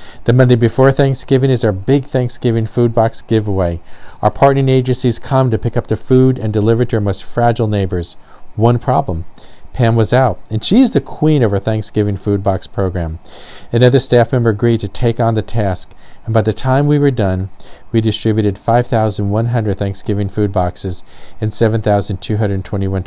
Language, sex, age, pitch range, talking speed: English, male, 50-69, 100-125 Hz, 175 wpm